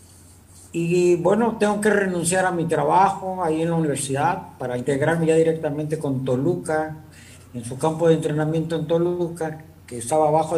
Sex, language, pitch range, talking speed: male, Spanish, 125-185 Hz, 160 wpm